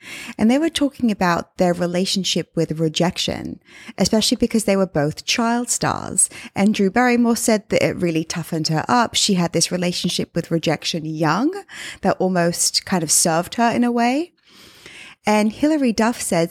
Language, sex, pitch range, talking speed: English, female, 180-230 Hz, 165 wpm